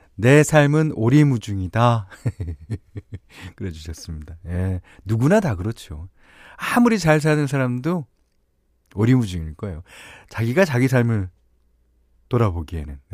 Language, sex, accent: Korean, male, native